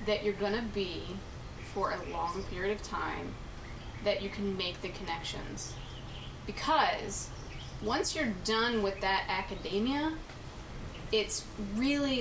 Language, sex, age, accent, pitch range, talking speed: English, female, 30-49, American, 195-240 Hz, 125 wpm